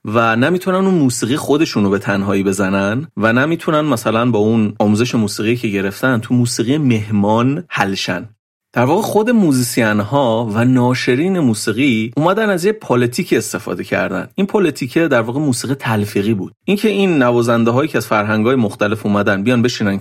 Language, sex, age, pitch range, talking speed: Persian, male, 30-49, 110-165 Hz, 160 wpm